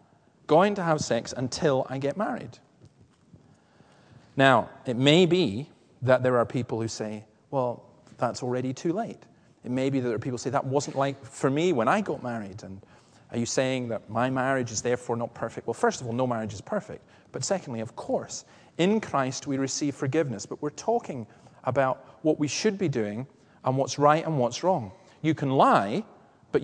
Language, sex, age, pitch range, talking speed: English, male, 40-59, 120-155 Hz, 200 wpm